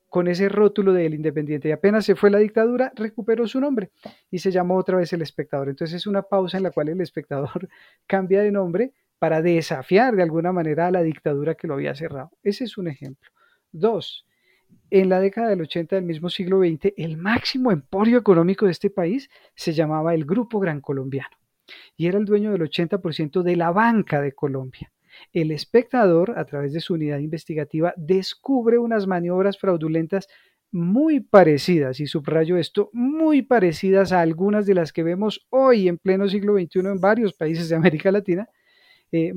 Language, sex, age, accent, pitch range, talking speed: Spanish, male, 40-59, Colombian, 165-210 Hz, 185 wpm